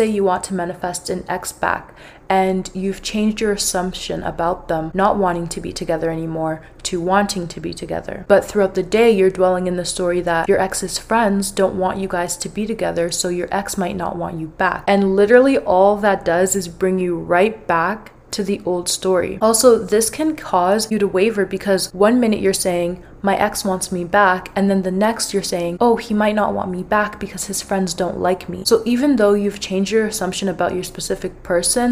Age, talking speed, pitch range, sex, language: 20-39, 215 wpm, 180-205 Hz, female, English